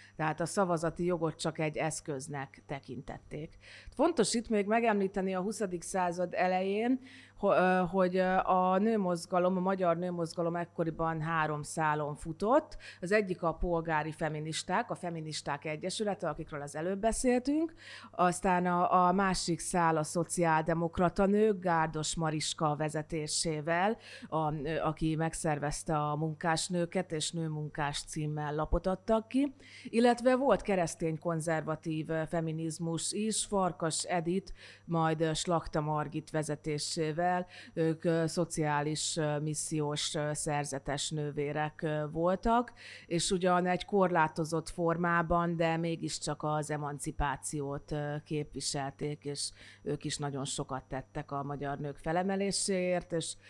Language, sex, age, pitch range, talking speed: Hungarian, female, 30-49, 150-180 Hz, 110 wpm